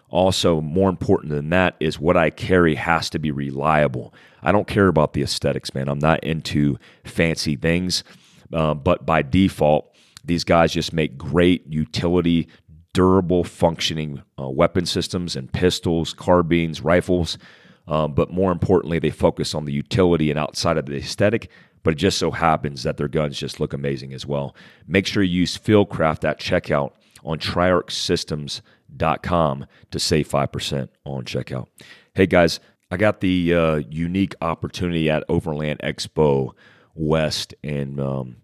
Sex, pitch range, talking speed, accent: male, 75-85 Hz, 160 wpm, American